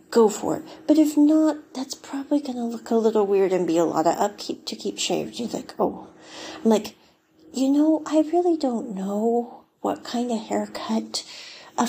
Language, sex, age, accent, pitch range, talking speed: English, female, 40-59, American, 210-295 Hz, 195 wpm